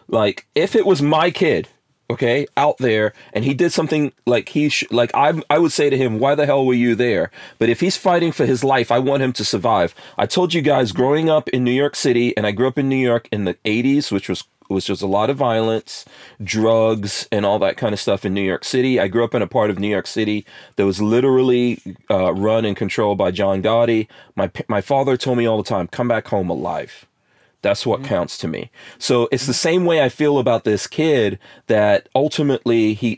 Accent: American